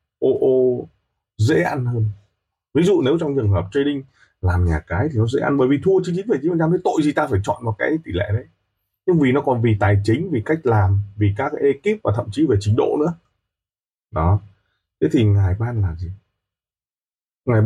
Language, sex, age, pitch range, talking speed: Vietnamese, male, 20-39, 100-130 Hz, 220 wpm